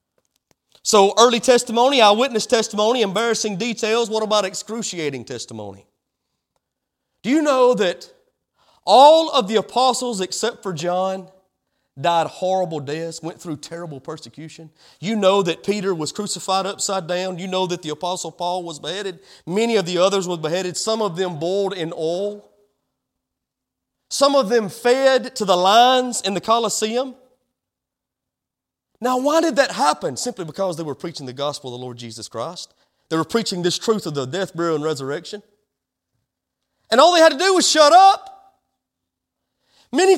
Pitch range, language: 185-290 Hz, English